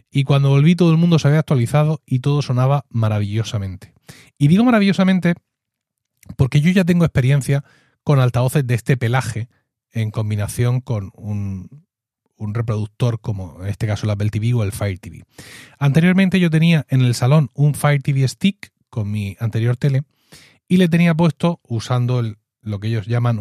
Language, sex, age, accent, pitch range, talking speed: Spanish, male, 30-49, Spanish, 115-155 Hz, 170 wpm